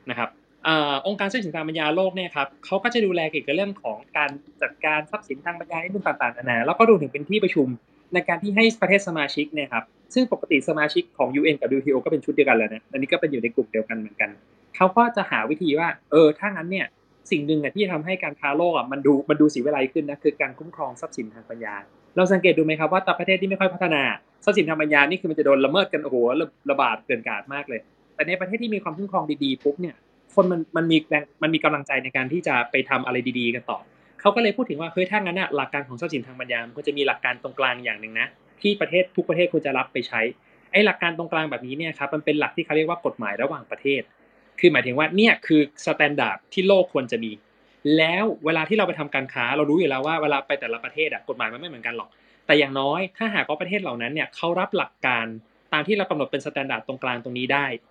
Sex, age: male, 20-39